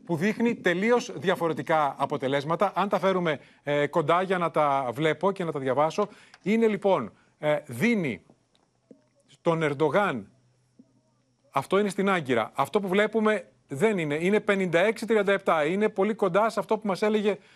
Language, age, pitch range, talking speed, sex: Greek, 30-49, 155-210 Hz, 145 wpm, male